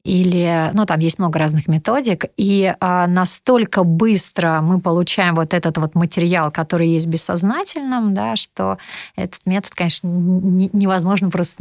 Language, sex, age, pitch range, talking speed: Russian, female, 30-49, 175-210 Hz, 150 wpm